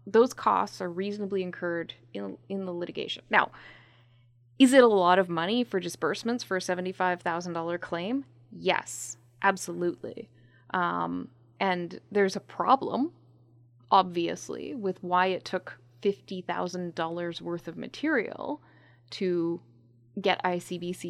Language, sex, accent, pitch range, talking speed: English, female, American, 165-235 Hz, 115 wpm